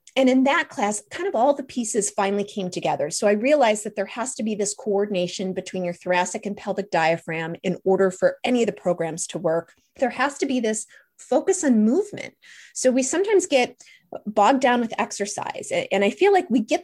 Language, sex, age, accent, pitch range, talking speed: English, female, 30-49, American, 190-275 Hz, 210 wpm